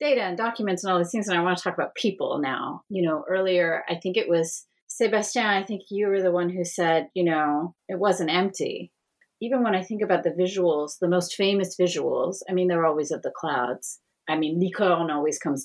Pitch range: 165-235 Hz